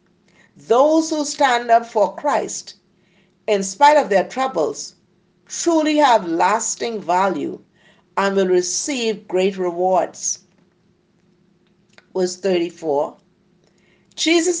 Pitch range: 180-230 Hz